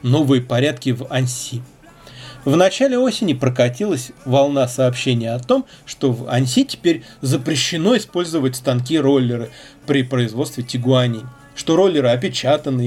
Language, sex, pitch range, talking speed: Russian, male, 125-155 Hz, 115 wpm